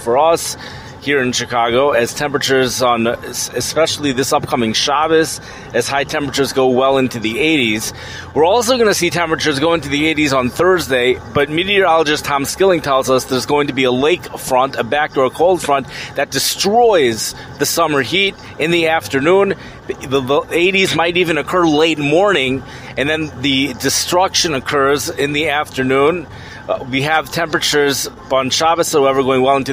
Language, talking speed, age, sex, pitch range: English, 165 wpm, 30-49, male, 125-150 Hz